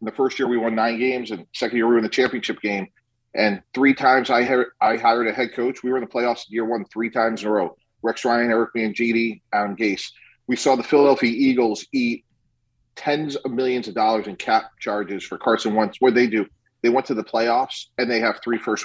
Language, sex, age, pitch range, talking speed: English, male, 40-59, 115-135 Hz, 240 wpm